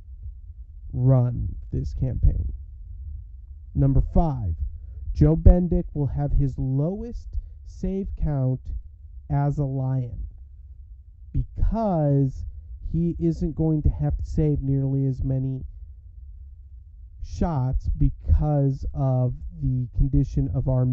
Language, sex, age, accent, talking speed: English, male, 40-59, American, 95 wpm